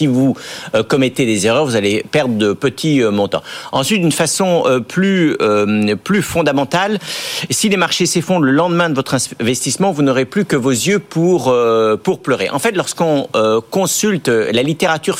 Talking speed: 160 wpm